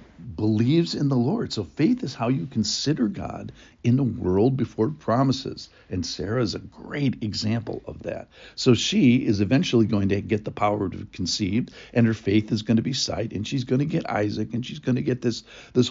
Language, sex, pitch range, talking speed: English, male, 105-135 Hz, 215 wpm